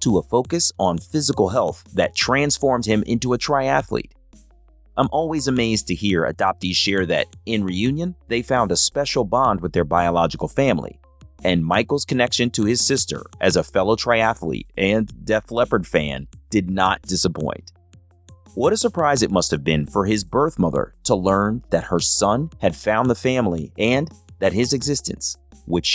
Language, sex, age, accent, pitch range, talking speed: English, male, 30-49, American, 90-125 Hz, 170 wpm